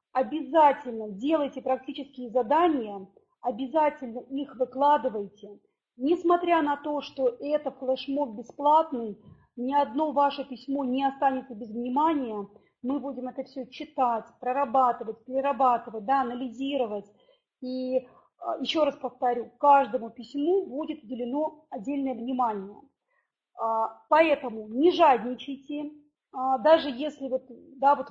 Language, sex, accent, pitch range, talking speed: Russian, female, native, 250-295 Hz, 105 wpm